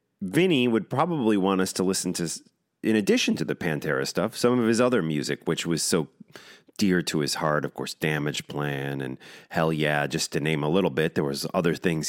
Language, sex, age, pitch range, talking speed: English, male, 30-49, 75-100 Hz, 215 wpm